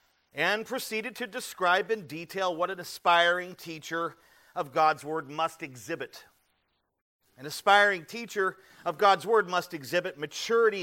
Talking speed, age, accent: 135 wpm, 40-59, American